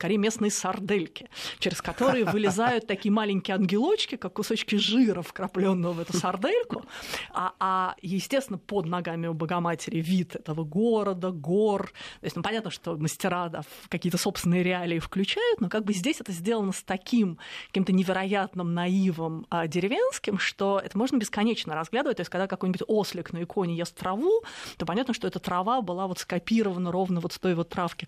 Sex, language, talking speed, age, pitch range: female, Russian, 175 wpm, 30-49, 180-225 Hz